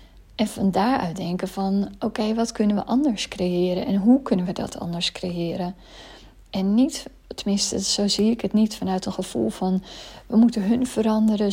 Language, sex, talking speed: Dutch, female, 175 wpm